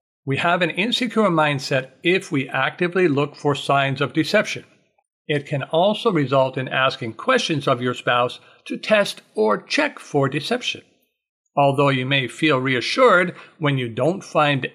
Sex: male